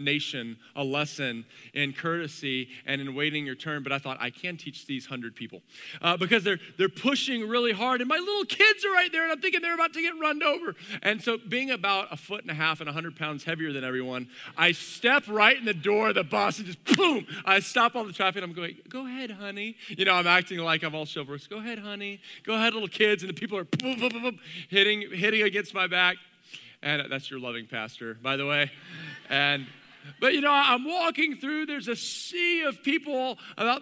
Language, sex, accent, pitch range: English, male, American, 155-245 Hz